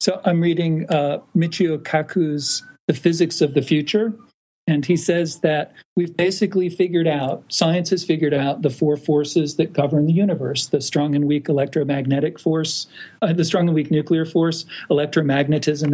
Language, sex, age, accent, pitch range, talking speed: English, male, 50-69, American, 145-170 Hz, 165 wpm